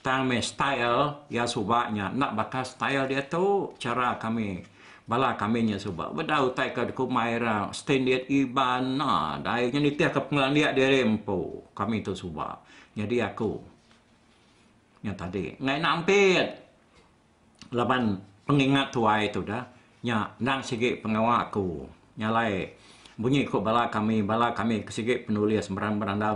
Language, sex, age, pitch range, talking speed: Malay, male, 60-79, 105-140 Hz, 140 wpm